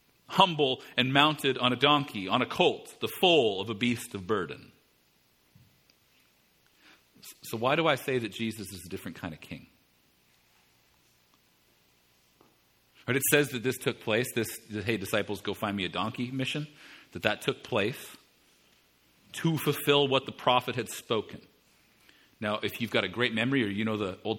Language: English